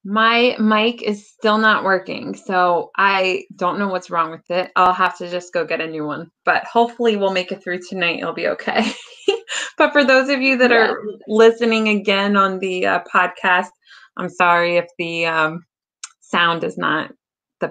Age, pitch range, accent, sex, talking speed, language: 20-39, 195-270 Hz, American, female, 185 wpm, English